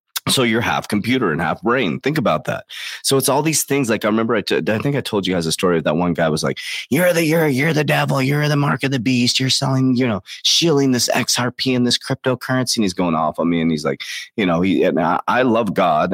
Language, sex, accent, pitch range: English, male, American, 85-130 Hz